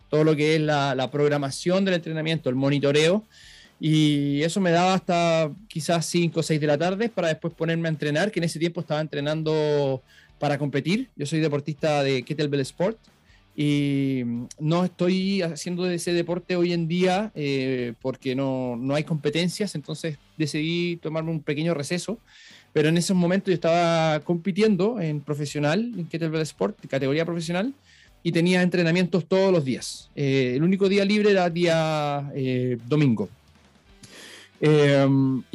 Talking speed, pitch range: 155 wpm, 145-180 Hz